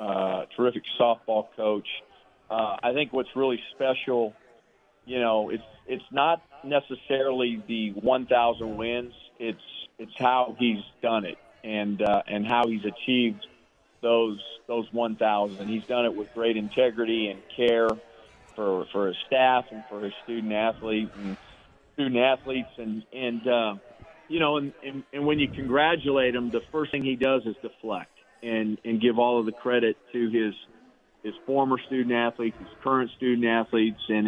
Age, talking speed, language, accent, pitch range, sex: 40-59, 155 wpm, English, American, 110-130 Hz, male